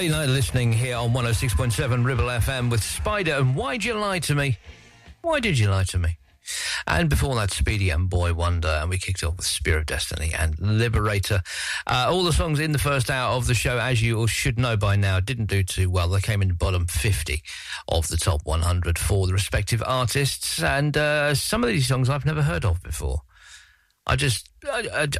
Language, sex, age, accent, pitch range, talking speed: English, male, 50-69, British, 90-125 Hz, 210 wpm